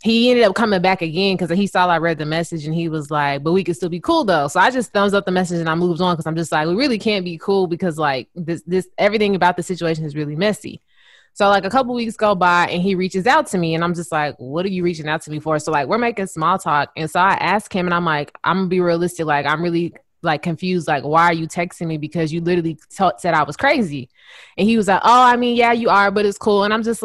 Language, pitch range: English, 165-200 Hz